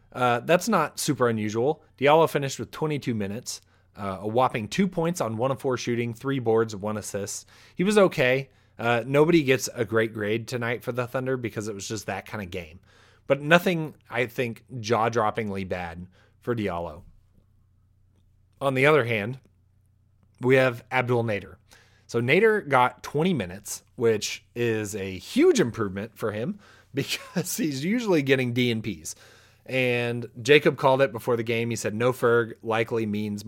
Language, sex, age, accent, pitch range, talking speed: English, male, 30-49, American, 105-130 Hz, 165 wpm